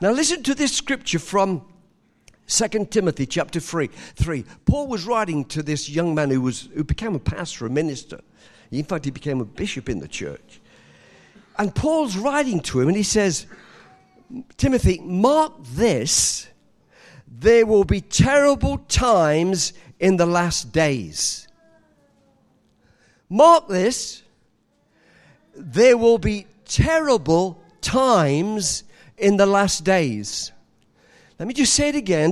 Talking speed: 140 wpm